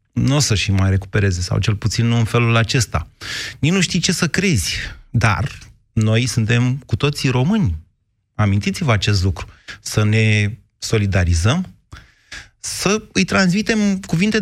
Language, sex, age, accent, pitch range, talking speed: Romanian, male, 30-49, native, 105-140 Hz, 145 wpm